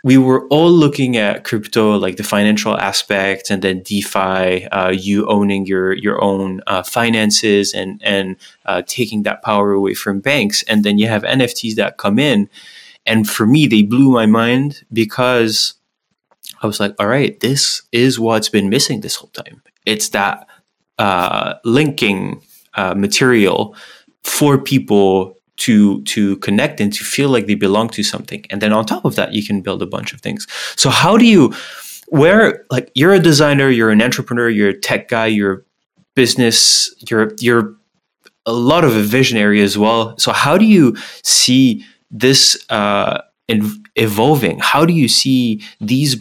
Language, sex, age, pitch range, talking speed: English, male, 20-39, 105-130 Hz, 170 wpm